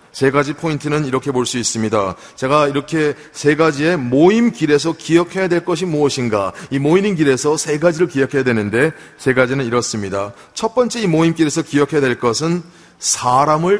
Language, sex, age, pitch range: Korean, male, 30-49, 130-175 Hz